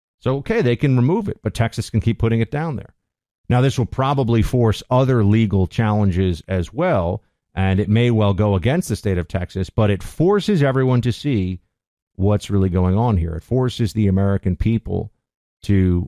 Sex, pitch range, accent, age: male, 95-115 Hz, American, 50-69